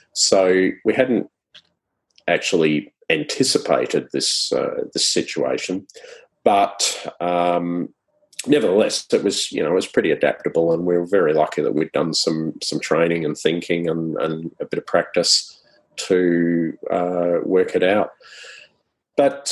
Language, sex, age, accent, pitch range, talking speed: English, male, 40-59, Australian, 90-120 Hz, 140 wpm